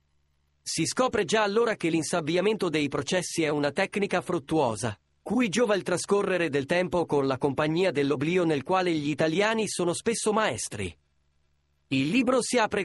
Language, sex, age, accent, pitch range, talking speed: Italian, male, 30-49, native, 140-195 Hz, 155 wpm